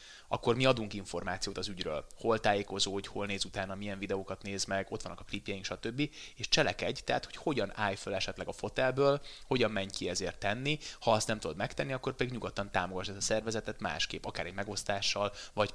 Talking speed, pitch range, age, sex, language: 200 wpm, 95-120 Hz, 20-39, male, Hungarian